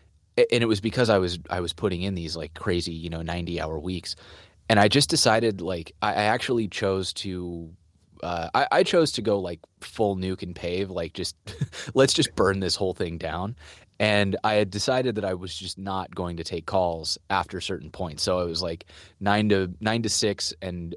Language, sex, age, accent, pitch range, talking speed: English, male, 30-49, American, 85-100 Hz, 210 wpm